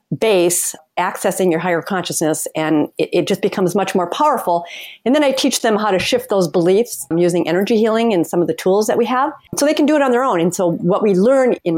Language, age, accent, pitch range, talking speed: English, 40-59, American, 175-255 Hz, 245 wpm